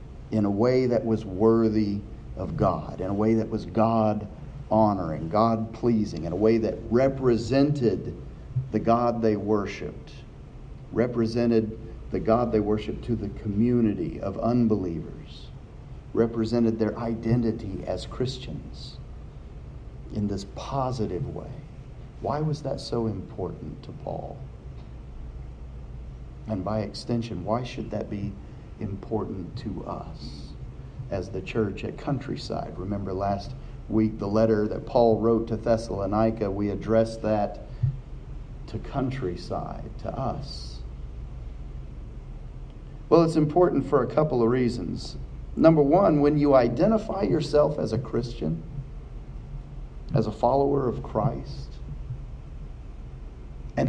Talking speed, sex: 115 wpm, male